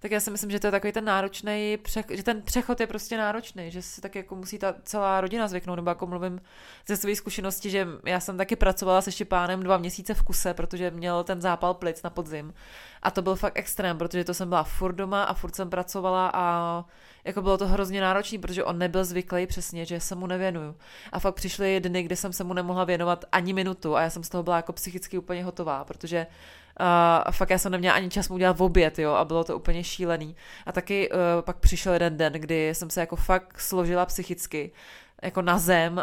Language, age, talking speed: Czech, 20-39, 225 wpm